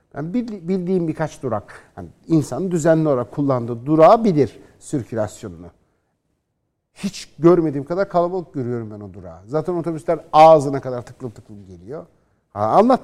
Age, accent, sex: 60-79, native, male